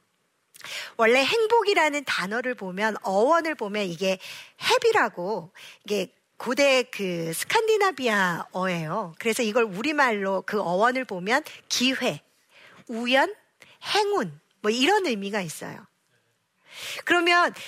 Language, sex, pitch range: Korean, female, 215-320 Hz